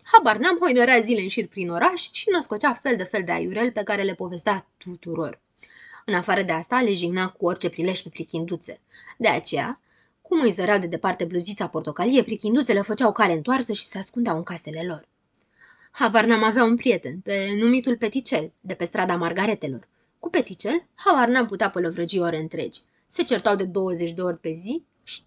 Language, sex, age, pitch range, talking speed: Romanian, female, 20-39, 175-245 Hz, 180 wpm